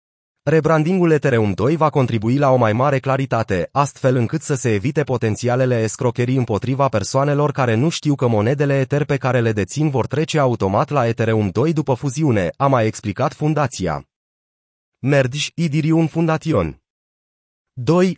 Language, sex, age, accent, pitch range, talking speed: Romanian, male, 30-49, native, 120-150 Hz, 150 wpm